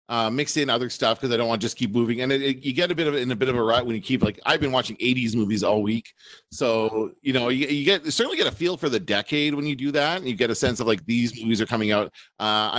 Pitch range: 110-140 Hz